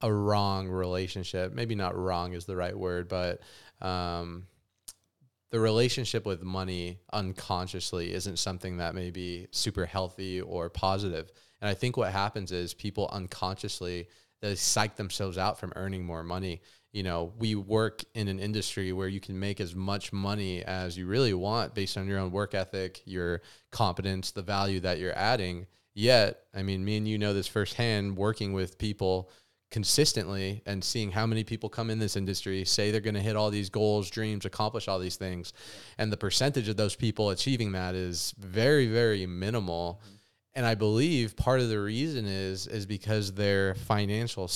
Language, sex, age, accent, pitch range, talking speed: English, male, 20-39, American, 95-110 Hz, 180 wpm